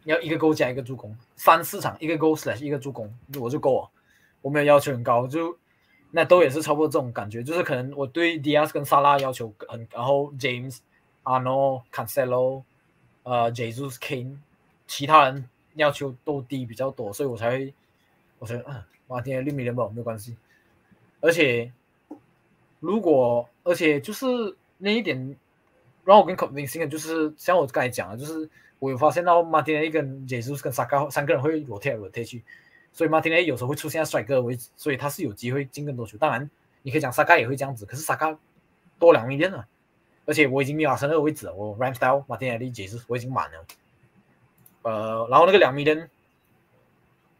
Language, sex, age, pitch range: Chinese, male, 20-39, 125-155 Hz